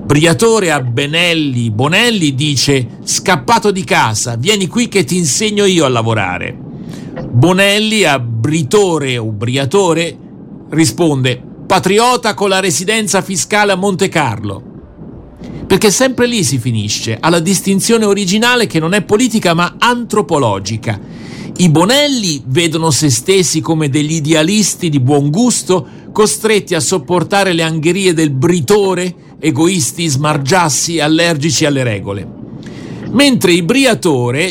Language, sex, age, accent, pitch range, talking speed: Italian, male, 50-69, native, 140-195 Hz, 120 wpm